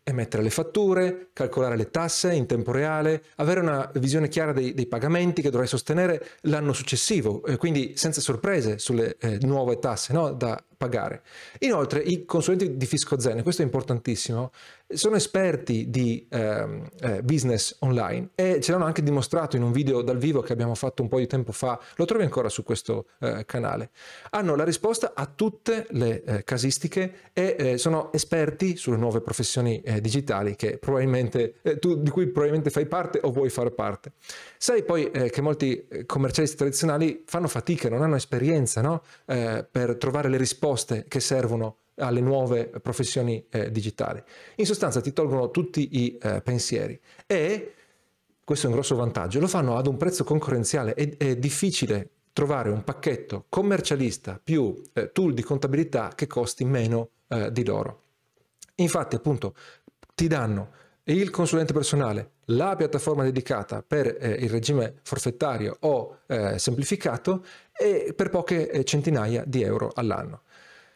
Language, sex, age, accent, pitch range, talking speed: Italian, male, 40-59, native, 120-160 Hz, 160 wpm